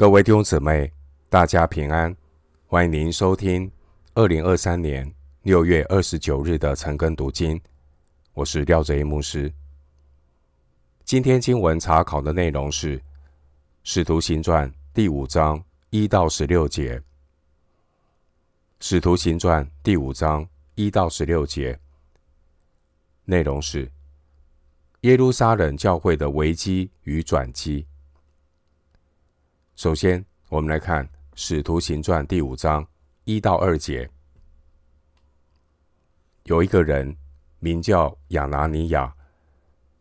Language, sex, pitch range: Chinese, male, 70-85 Hz